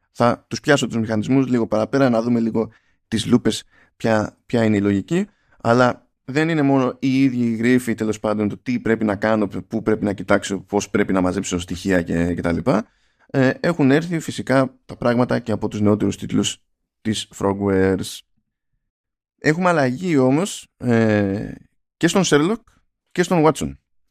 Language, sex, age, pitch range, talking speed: Greek, male, 20-39, 100-135 Hz, 160 wpm